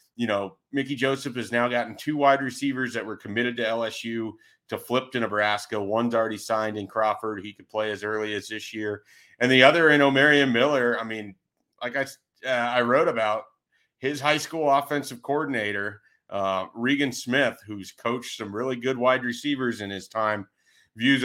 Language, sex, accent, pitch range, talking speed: English, male, American, 110-135 Hz, 185 wpm